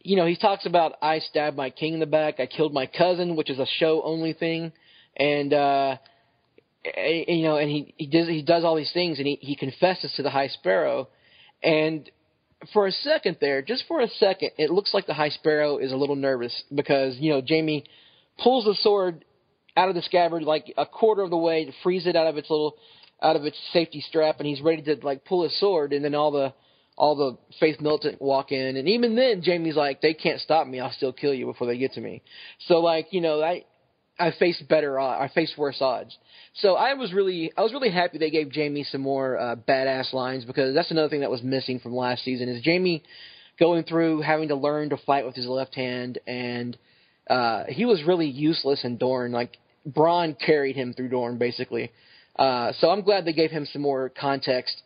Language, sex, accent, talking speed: English, male, American, 220 wpm